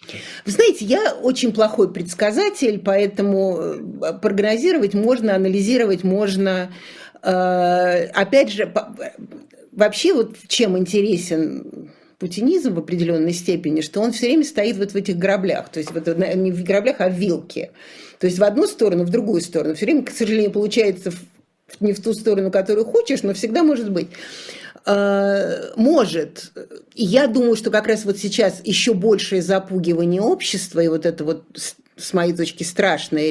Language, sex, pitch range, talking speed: Russian, female, 180-215 Hz, 145 wpm